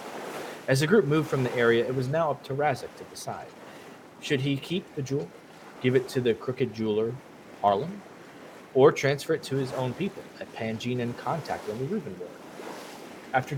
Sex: male